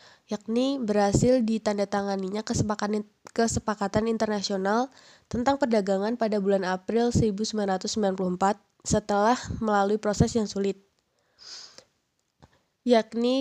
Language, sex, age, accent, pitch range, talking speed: Indonesian, female, 20-39, native, 205-230 Hz, 80 wpm